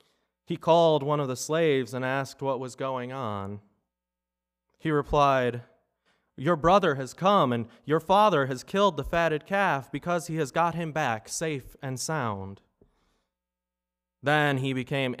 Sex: male